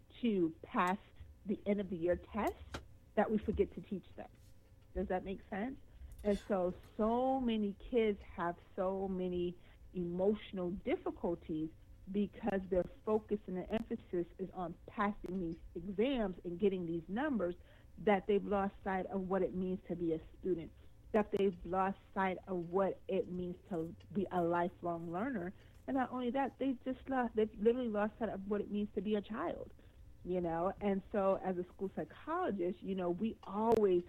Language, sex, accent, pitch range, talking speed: English, female, American, 175-220 Hz, 170 wpm